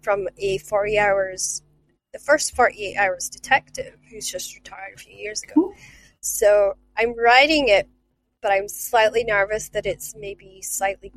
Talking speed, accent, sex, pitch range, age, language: 150 wpm, American, female, 200-260 Hz, 20-39, English